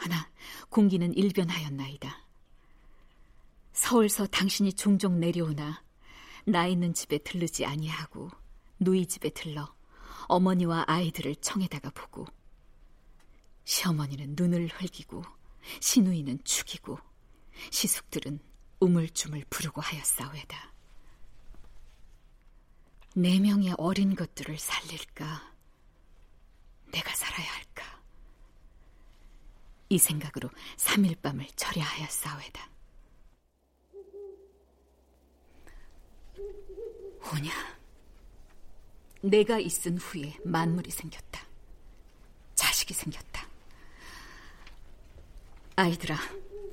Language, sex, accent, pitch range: Korean, female, native, 145-195 Hz